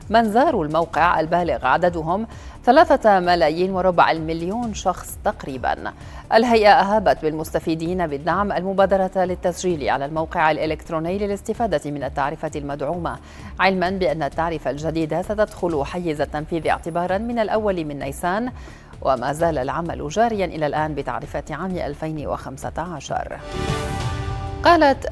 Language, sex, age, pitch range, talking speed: Arabic, female, 40-59, 155-185 Hz, 110 wpm